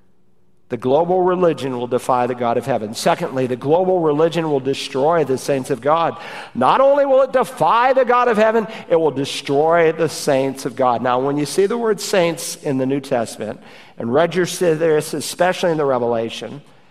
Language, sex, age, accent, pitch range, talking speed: English, male, 50-69, American, 145-195 Hz, 190 wpm